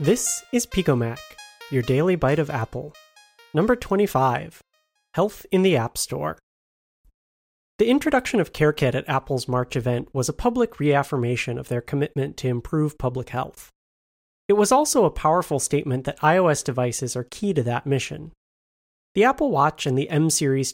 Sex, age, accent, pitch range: male, 30-49, American, 130-180 Hz